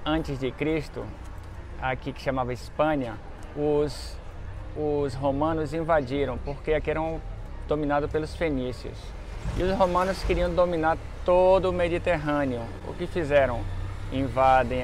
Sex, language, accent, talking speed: male, Portuguese, Brazilian, 115 wpm